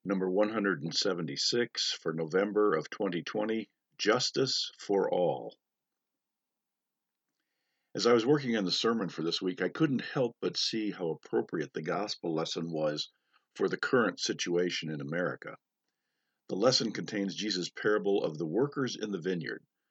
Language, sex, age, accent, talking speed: English, male, 50-69, American, 140 wpm